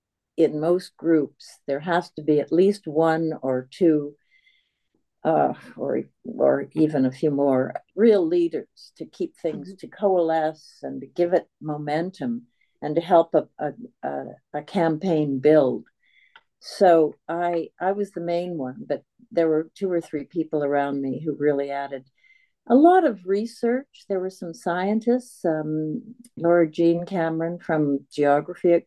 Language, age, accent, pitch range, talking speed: English, 60-79, American, 155-190 Hz, 150 wpm